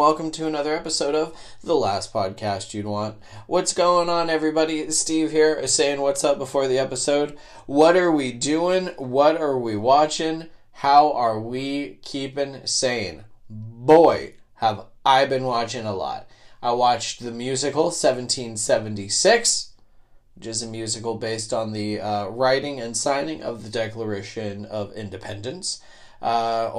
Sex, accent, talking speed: male, American, 145 wpm